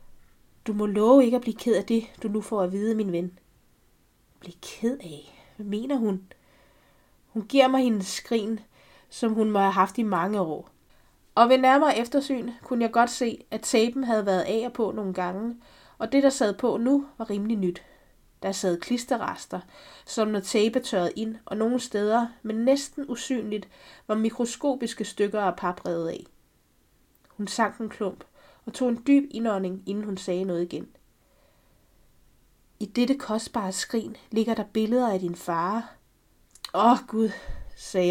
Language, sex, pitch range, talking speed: Danish, female, 190-245 Hz, 170 wpm